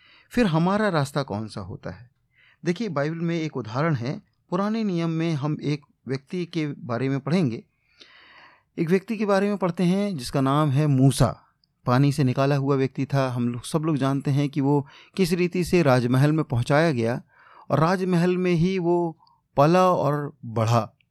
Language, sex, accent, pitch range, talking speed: Hindi, male, native, 125-160 Hz, 175 wpm